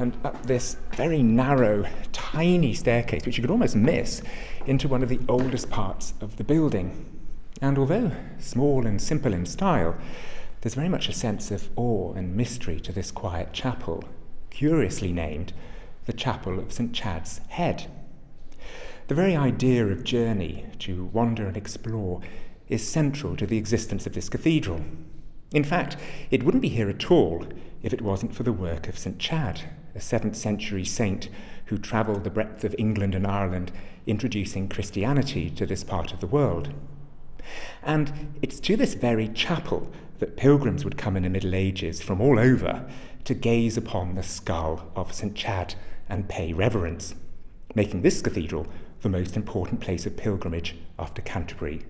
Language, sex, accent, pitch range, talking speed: English, male, British, 90-125 Hz, 165 wpm